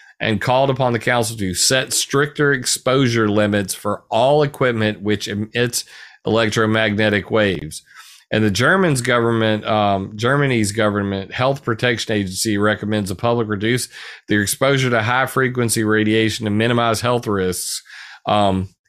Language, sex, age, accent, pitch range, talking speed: English, male, 40-59, American, 105-130 Hz, 135 wpm